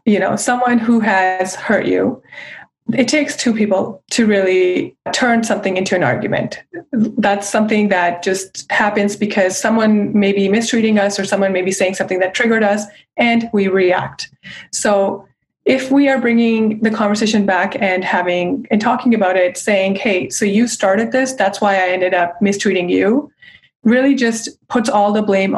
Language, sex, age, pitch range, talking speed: English, female, 20-39, 190-225 Hz, 175 wpm